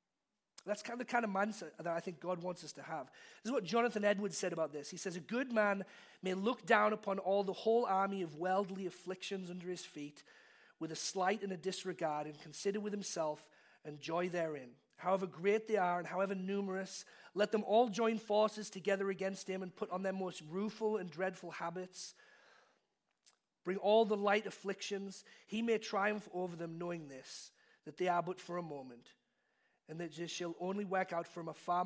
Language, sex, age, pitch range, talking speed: English, male, 40-59, 160-200 Hz, 205 wpm